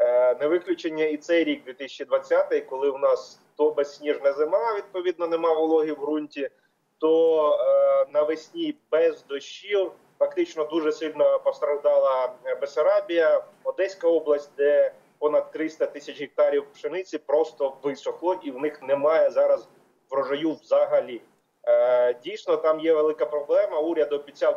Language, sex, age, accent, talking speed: Ukrainian, male, 30-49, native, 125 wpm